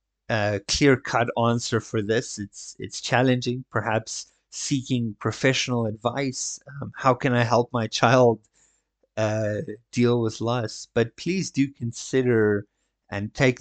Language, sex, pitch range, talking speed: English, male, 100-120 Hz, 130 wpm